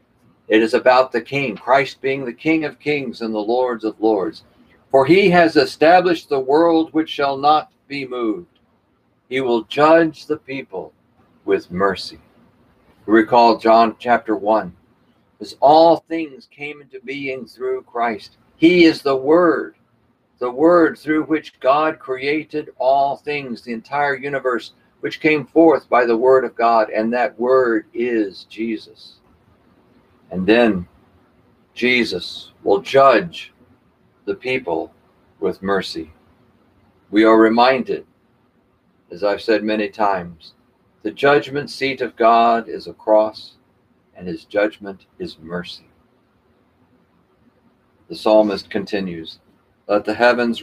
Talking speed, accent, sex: 130 wpm, American, male